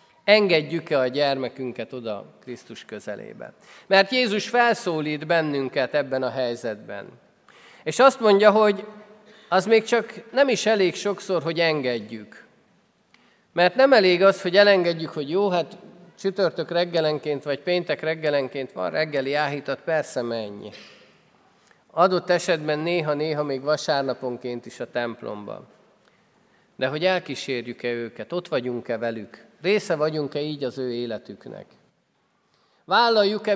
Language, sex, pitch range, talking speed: Hungarian, male, 140-205 Hz, 120 wpm